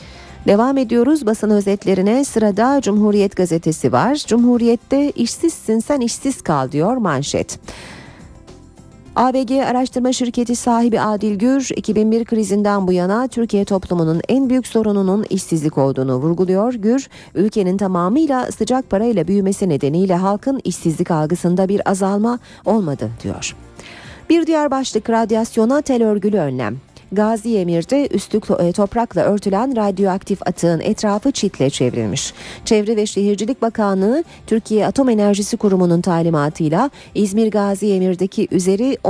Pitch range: 175-230 Hz